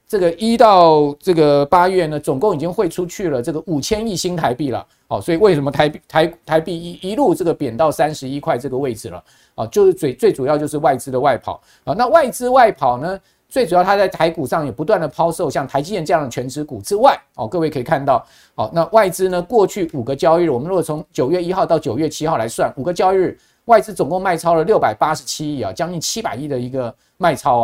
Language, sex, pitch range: Chinese, male, 135-180 Hz